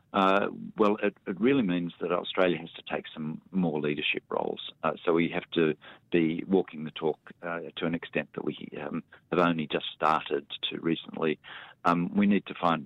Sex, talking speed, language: male, 195 wpm, English